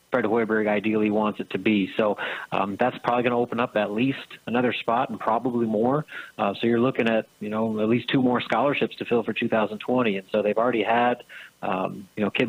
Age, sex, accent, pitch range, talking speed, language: 30-49, male, American, 110-125 Hz, 225 wpm, English